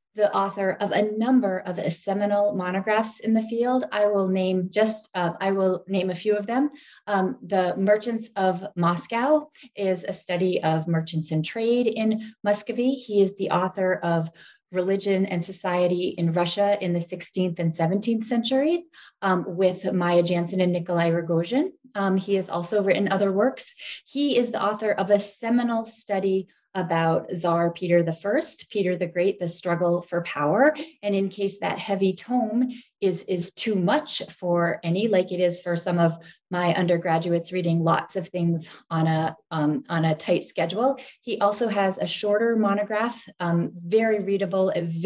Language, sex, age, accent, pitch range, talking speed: English, female, 20-39, American, 175-215 Hz, 165 wpm